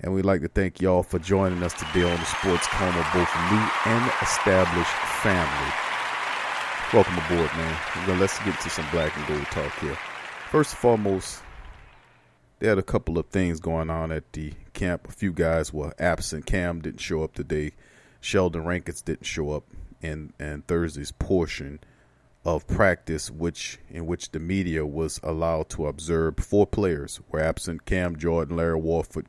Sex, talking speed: male, 170 wpm